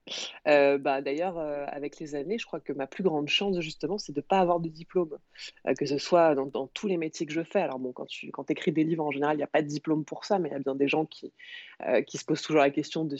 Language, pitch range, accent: French, 140-170 Hz, French